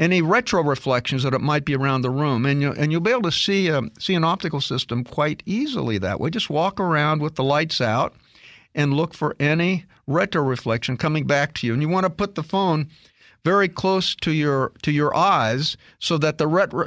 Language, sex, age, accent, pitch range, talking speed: English, male, 50-69, American, 135-170 Hz, 215 wpm